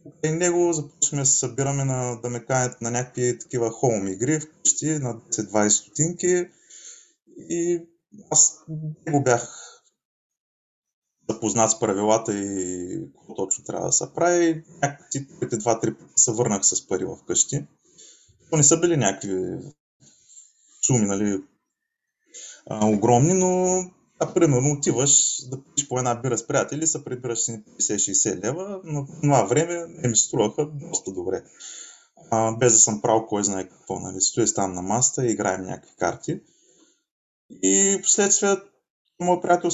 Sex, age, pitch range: male, 20-39, 110-160 Hz